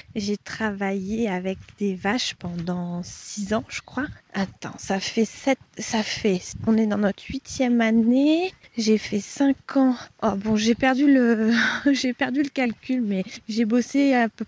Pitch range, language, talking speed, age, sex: 200-245 Hz, French, 170 wpm, 20-39, female